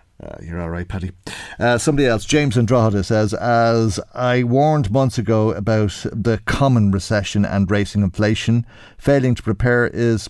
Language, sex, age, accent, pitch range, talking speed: English, male, 50-69, Irish, 100-130 Hz, 155 wpm